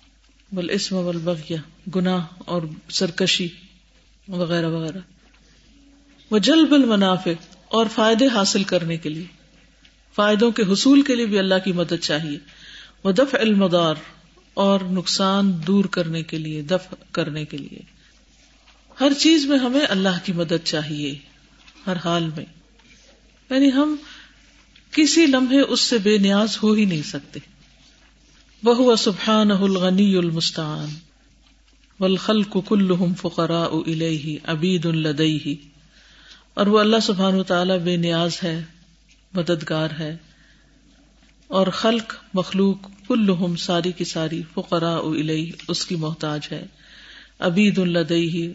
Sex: female